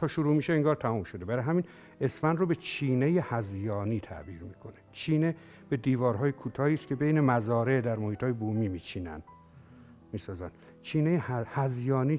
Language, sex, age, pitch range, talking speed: Persian, male, 60-79, 105-140 Hz, 150 wpm